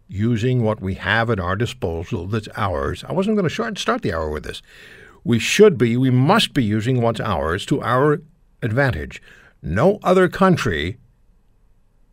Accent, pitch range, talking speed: American, 95-160 Hz, 165 wpm